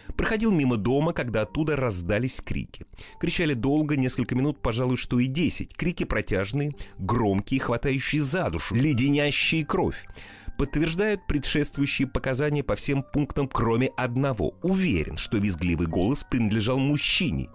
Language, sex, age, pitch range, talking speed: Russian, male, 30-49, 100-145 Hz, 125 wpm